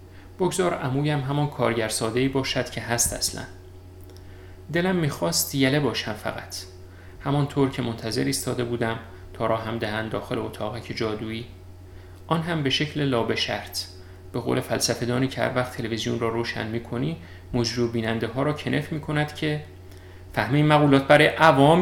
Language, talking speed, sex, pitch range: Persian, 145 wpm, male, 95-140 Hz